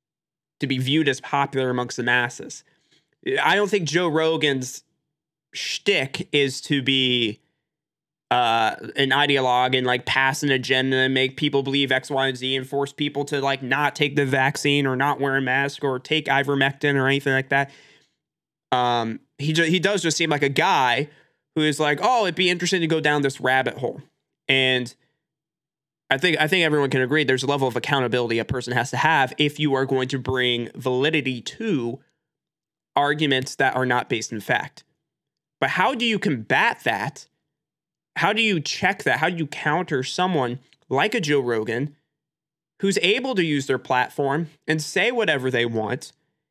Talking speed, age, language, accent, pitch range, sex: 180 wpm, 20-39, English, American, 130-160 Hz, male